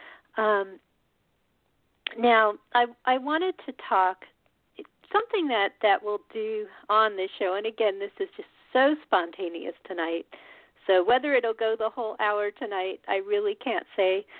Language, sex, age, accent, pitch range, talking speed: English, female, 50-69, American, 200-315 Hz, 145 wpm